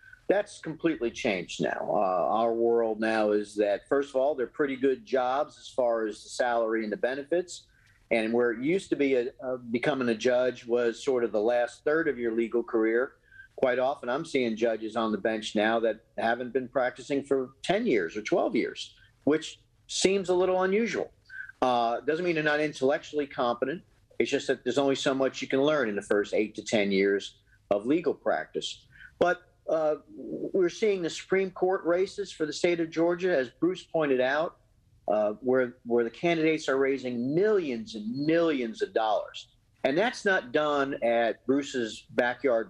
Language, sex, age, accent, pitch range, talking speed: English, male, 50-69, American, 115-160 Hz, 185 wpm